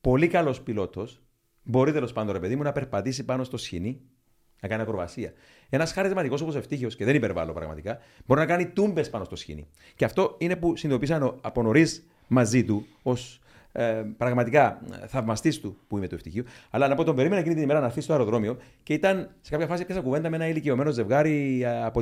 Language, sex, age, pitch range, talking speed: Greek, male, 40-59, 115-160 Hz, 195 wpm